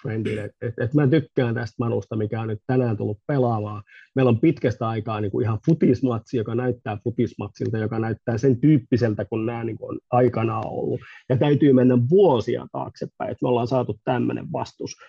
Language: Finnish